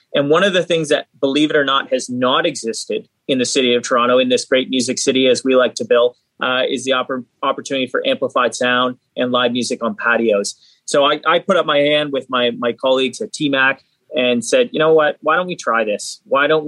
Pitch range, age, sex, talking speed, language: 125-145 Hz, 30-49, male, 235 wpm, English